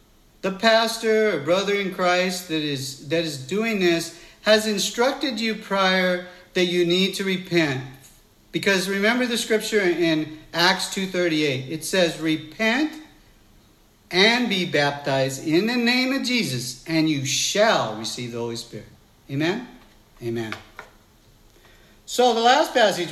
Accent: American